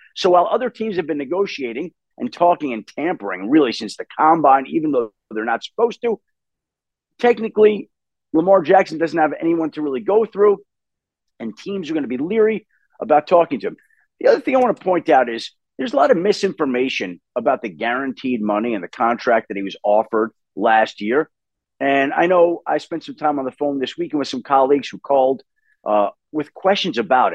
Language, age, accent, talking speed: English, 50-69, American, 195 wpm